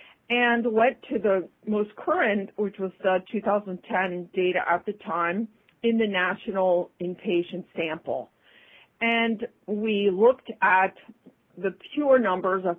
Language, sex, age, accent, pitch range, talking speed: English, female, 50-69, American, 175-220 Hz, 125 wpm